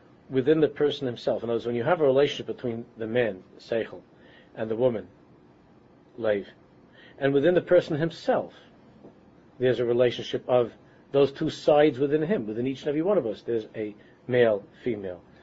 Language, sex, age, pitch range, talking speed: English, male, 40-59, 115-155 Hz, 180 wpm